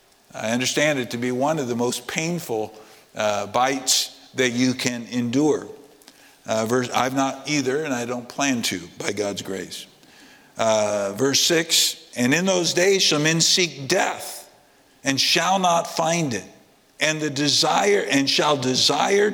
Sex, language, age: male, English, 50-69